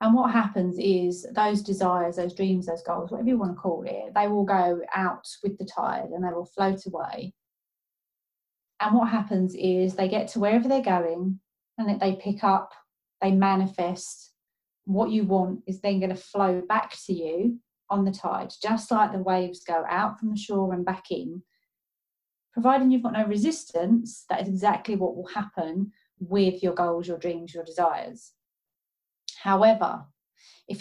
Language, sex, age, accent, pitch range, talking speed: English, female, 30-49, British, 180-210 Hz, 175 wpm